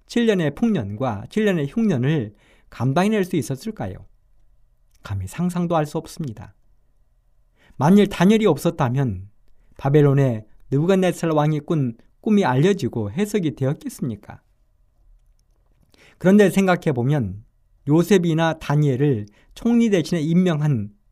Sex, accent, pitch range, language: male, native, 110-175 Hz, Korean